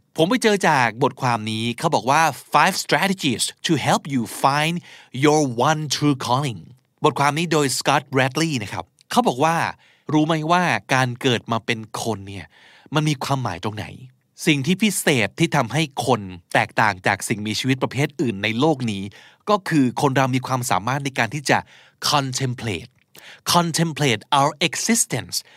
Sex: male